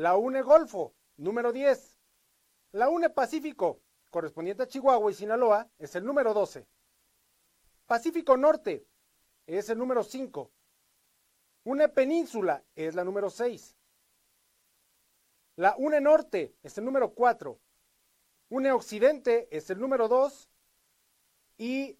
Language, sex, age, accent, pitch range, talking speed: Spanish, male, 40-59, Mexican, 185-265 Hz, 115 wpm